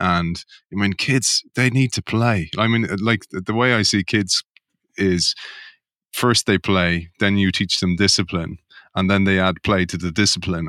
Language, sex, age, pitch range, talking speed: English, male, 30-49, 90-105 Hz, 185 wpm